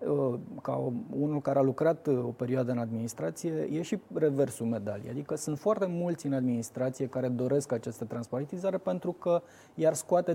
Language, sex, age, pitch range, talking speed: Romanian, male, 20-39, 130-175 Hz, 155 wpm